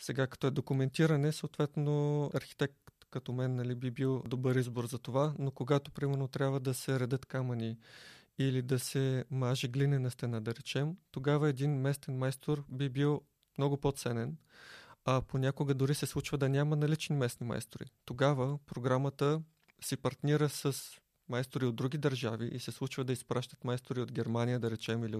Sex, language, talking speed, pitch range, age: male, Bulgarian, 165 wpm, 130-145 Hz, 20-39